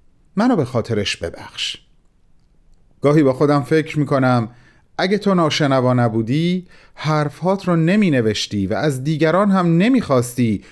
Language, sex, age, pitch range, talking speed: Persian, male, 40-59, 120-155 Hz, 130 wpm